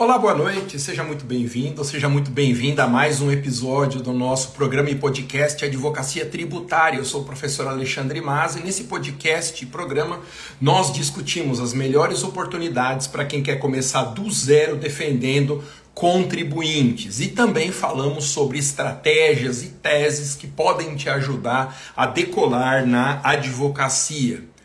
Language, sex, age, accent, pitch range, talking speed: Portuguese, male, 50-69, Brazilian, 130-160 Hz, 145 wpm